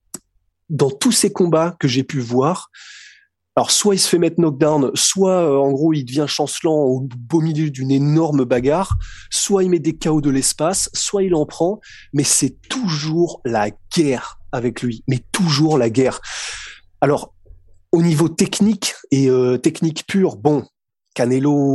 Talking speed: 165 wpm